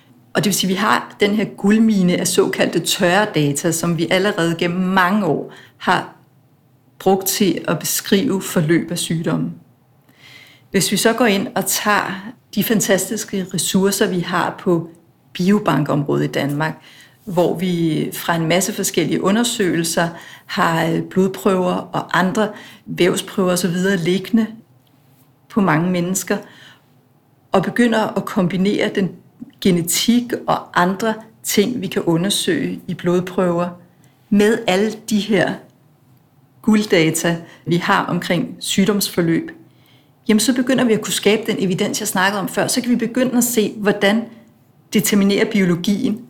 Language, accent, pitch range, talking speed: Danish, native, 155-205 Hz, 135 wpm